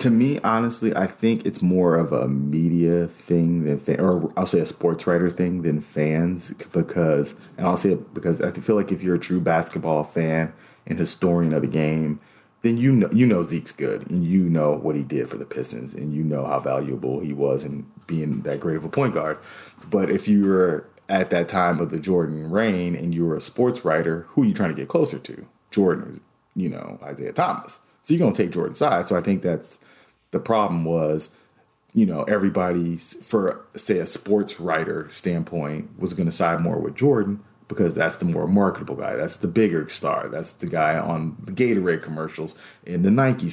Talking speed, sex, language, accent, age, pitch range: 210 wpm, male, English, American, 30-49, 80-105 Hz